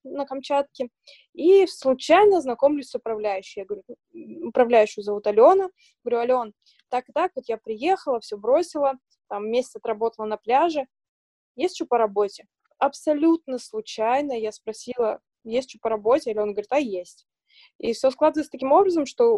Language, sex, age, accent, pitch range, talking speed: Russian, female, 20-39, native, 220-305 Hz, 155 wpm